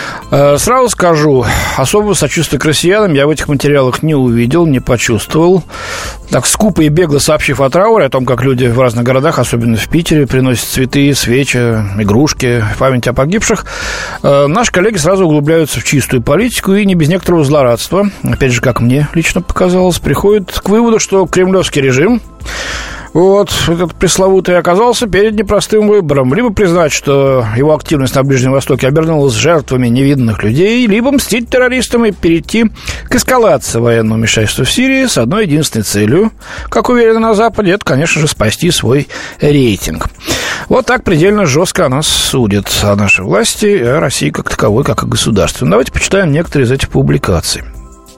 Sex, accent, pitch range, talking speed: male, native, 125-195 Hz, 160 wpm